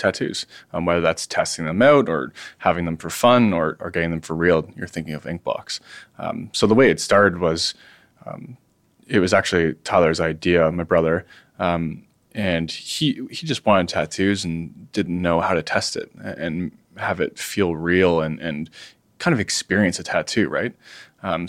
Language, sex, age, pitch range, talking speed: English, male, 20-39, 85-100 Hz, 185 wpm